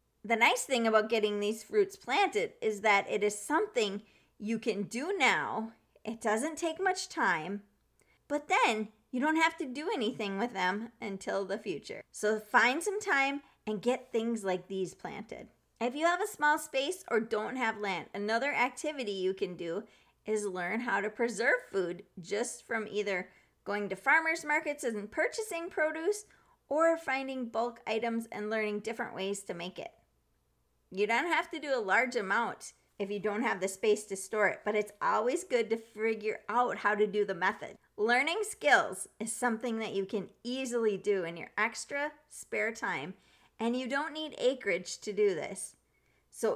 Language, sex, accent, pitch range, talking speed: English, female, American, 200-275 Hz, 180 wpm